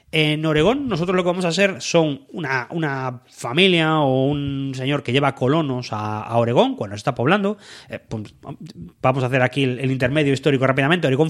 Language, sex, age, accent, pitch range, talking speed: English, male, 30-49, Spanish, 120-155 Hz, 195 wpm